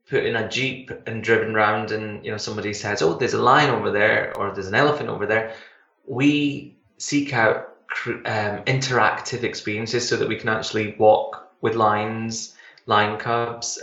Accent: British